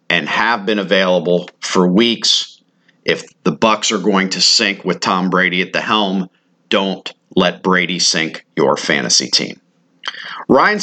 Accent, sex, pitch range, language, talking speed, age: American, male, 95-120 Hz, English, 150 wpm, 50-69